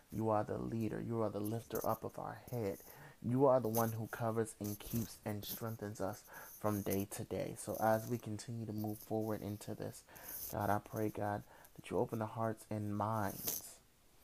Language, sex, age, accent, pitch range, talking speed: English, male, 30-49, American, 105-115 Hz, 200 wpm